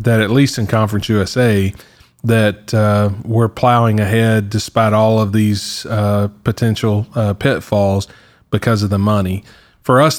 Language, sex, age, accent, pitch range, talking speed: English, male, 30-49, American, 105-120 Hz, 145 wpm